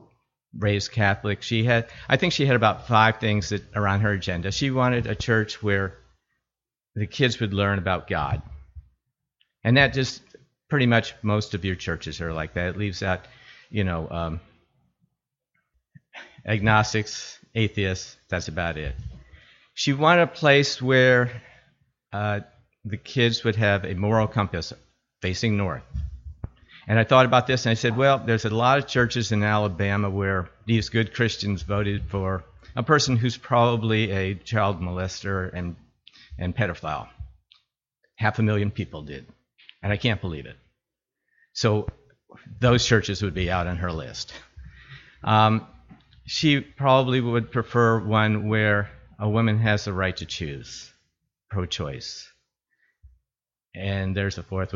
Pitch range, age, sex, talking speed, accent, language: 95-120 Hz, 50-69, male, 150 wpm, American, English